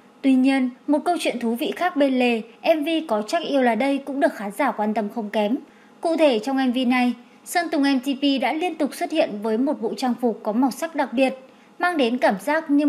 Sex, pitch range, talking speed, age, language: male, 235-300 Hz, 240 wpm, 20-39, English